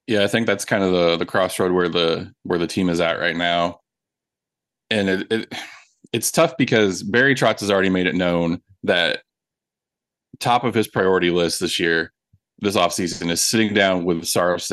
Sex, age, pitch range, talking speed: male, 20-39, 90-105 Hz, 185 wpm